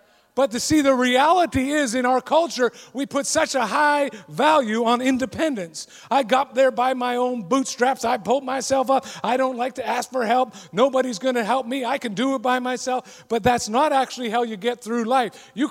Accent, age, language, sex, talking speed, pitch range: American, 40-59, English, male, 215 wpm, 165-255 Hz